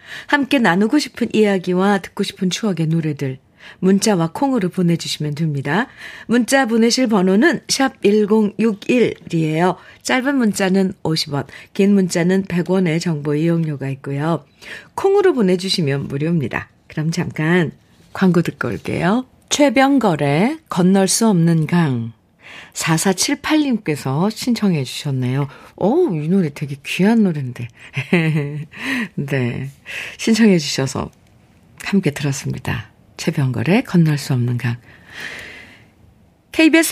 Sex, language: female, Korean